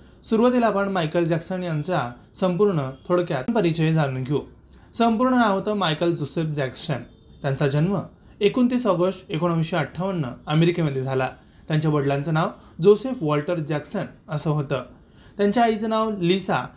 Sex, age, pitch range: male, 30-49, 150-195 Hz